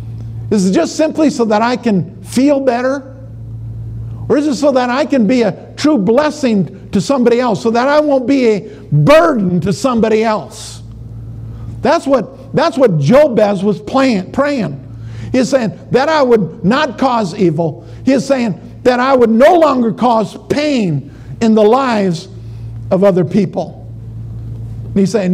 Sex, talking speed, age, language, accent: male, 160 wpm, 50-69, English, American